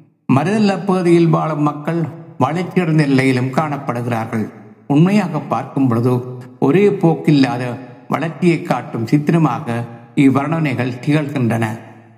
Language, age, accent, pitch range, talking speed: Tamil, 60-79, native, 130-165 Hz, 90 wpm